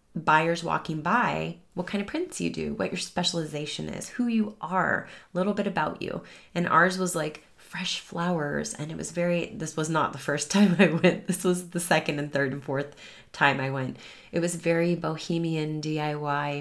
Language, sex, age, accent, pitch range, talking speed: English, female, 30-49, American, 145-175 Hz, 200 wpm